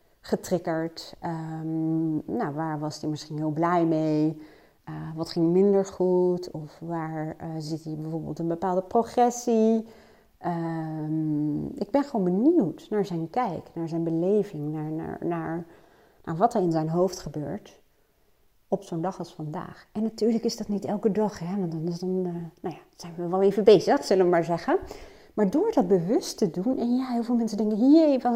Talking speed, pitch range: 185 wpm, 160-225 Hz